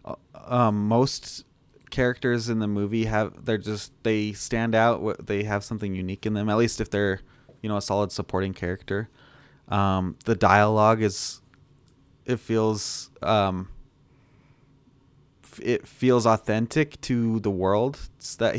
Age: 20-39